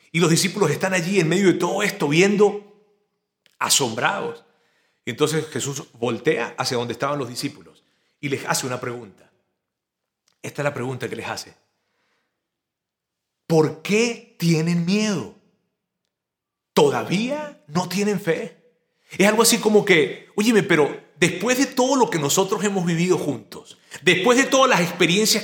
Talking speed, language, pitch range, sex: 145 wpm, Spanish, 160-215 Hz, male